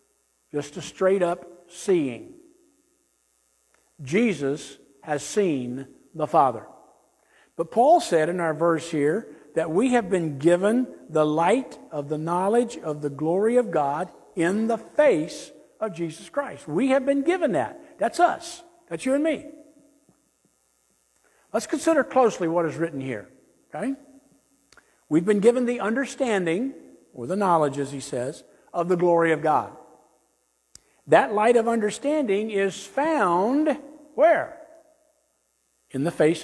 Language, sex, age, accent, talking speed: English, male, 60-79, American, 135 wpm